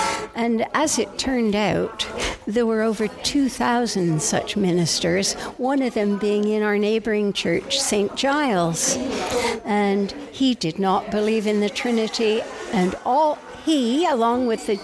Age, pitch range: 60-79, 200-245 Hz